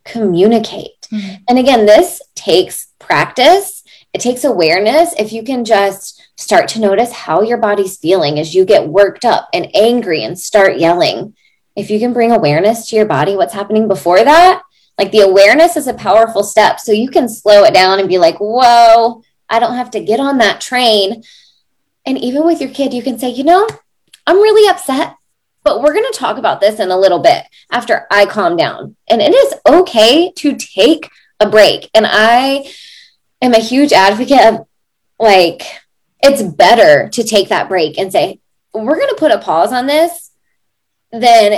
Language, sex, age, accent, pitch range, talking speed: English, female, 20-39, American, 195-275 Hz, 185 wpm